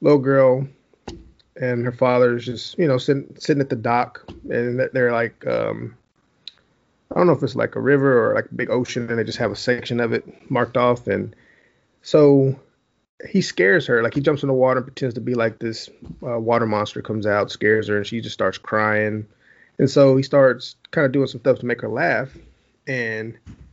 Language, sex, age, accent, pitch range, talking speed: English, male, 30-49, American, 110-130 Hz, 210 wpm